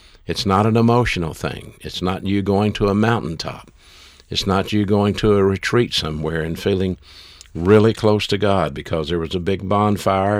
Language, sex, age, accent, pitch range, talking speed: English, male, 50-69, American, 80-100 Hz, 185 wpm